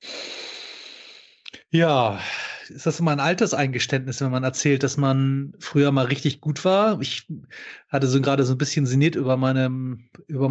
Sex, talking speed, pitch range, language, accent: male, 150 wpm, 130-160 Hz, German, German